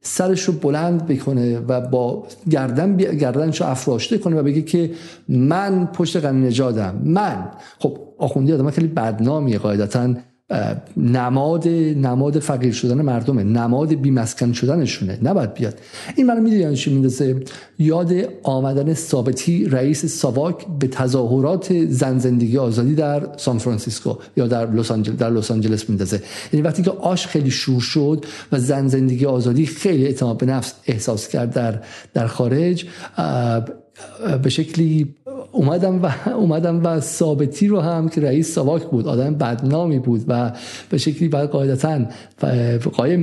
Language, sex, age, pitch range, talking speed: Persian, male, 50-69, 125-165 Hz, 140 wpm